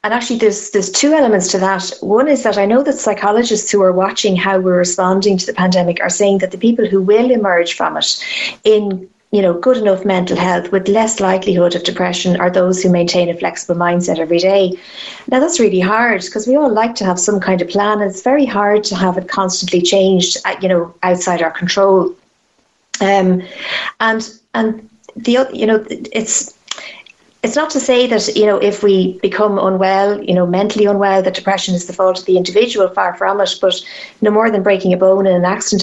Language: English